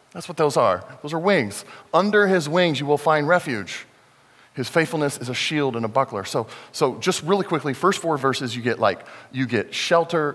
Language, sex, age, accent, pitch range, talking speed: English, male, 40-59, American, 115-140 Hz, 210 wpm